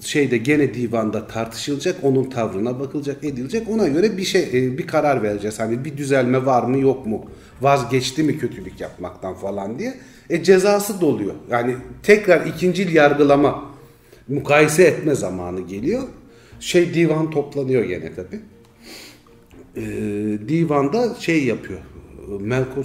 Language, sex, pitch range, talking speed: Turkish, male, 110-145 Hz, 130 wpm